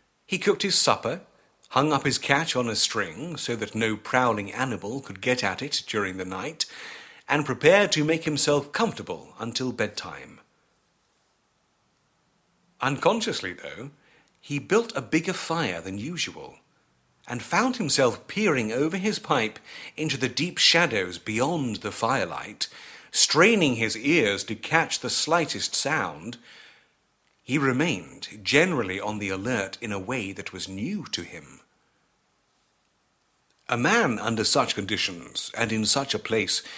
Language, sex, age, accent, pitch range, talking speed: English, male, 40-59, British, 105-165 Hz, 140 wpm